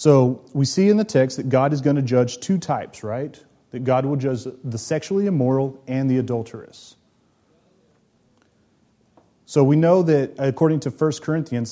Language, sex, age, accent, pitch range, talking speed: English, male, 30-49, American, 115-145 Hz, 170 wpm